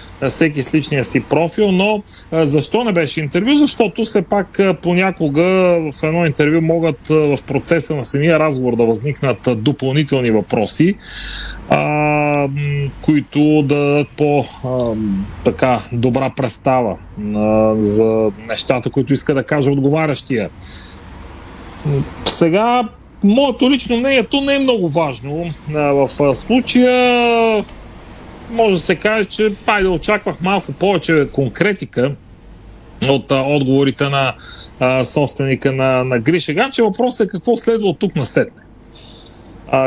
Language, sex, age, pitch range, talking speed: Bulgarian, male, 30-49, 130-180 Hz, 120 wpm